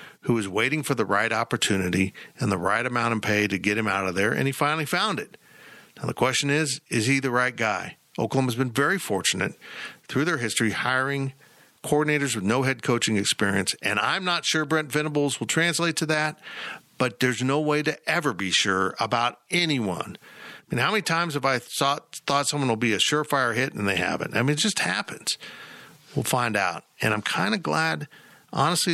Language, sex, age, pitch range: English, male, 50-69, 120-160 Hz